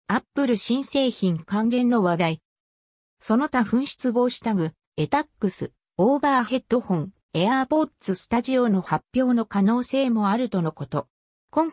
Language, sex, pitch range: Japanese, female, 175-265 Hz